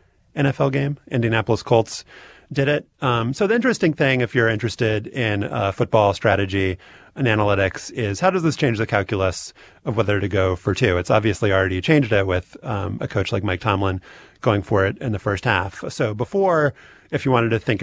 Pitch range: 100-125 Hz